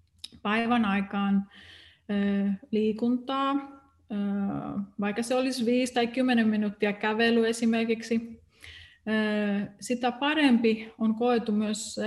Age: 30-49